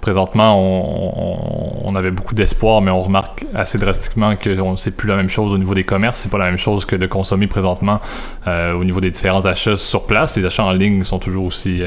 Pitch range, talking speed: 95-105 Hz, 235 wpm